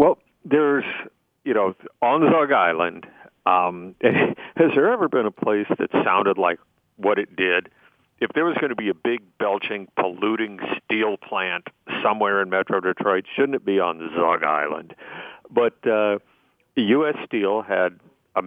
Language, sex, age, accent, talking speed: English, male, 50-69, American, 155 wpm